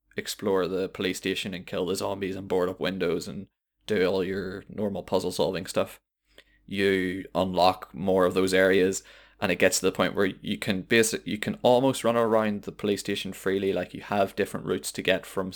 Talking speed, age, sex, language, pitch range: 205 wpm, 20-39, male, English, 95-110 Hz